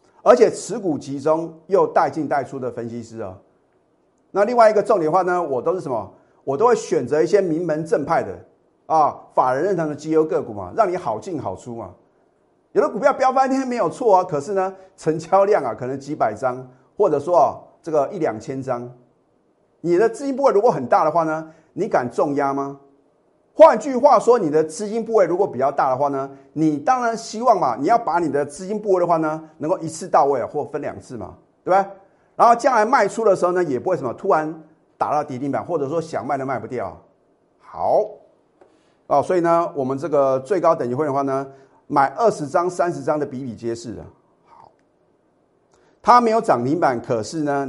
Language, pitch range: Chinese, 140-195 Hz